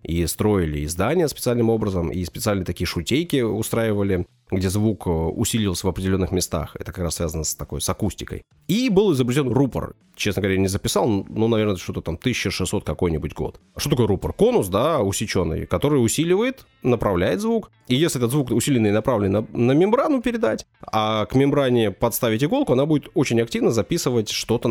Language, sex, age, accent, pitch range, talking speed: Russian, male, 30-49, native, 100-130 Hz, 170 wpm